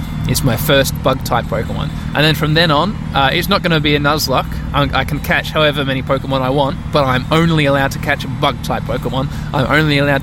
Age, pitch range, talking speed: 20-39, 120-160 Hz, 225 wpm